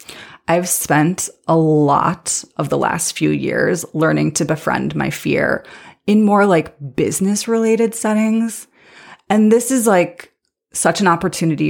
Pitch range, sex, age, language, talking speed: 165-225 Hz, female, 30-49, English, 135 wpm